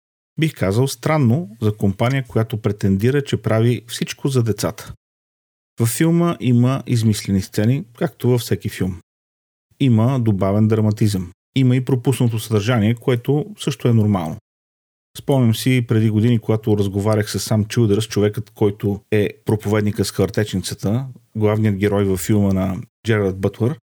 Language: Bulgarian